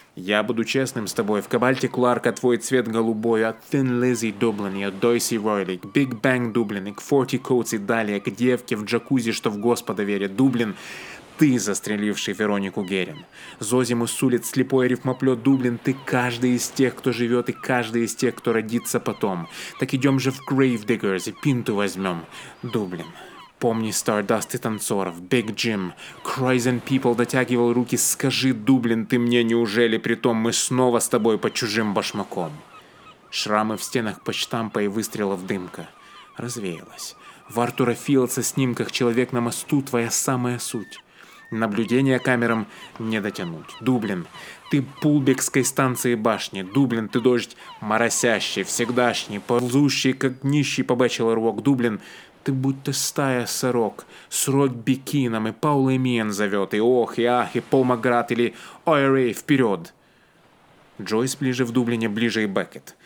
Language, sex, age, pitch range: Russian, male, 20-39, 115-130 Hz